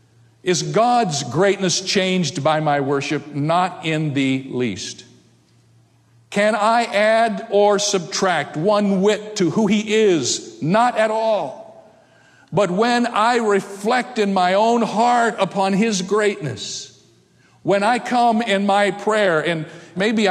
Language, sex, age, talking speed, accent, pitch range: English, male, 50-69, 130 wpm, American, 145-215 Hz